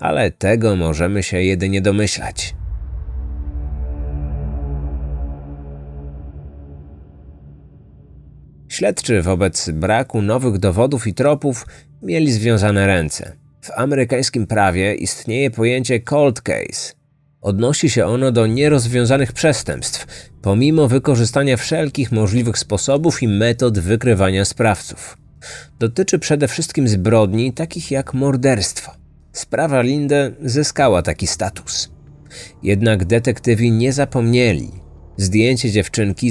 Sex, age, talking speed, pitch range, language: male, 30-49, 95 wpm, 95-135 Hz, Polish